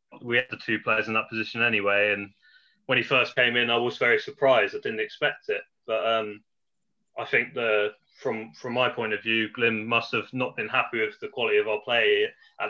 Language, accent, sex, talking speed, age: English, British, male, 220 wpm, 20-39